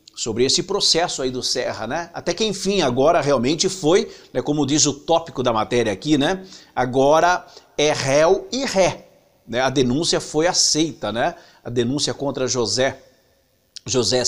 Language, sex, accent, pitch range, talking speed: English, male, Brazilian, 140-190 Hz, 160 wpm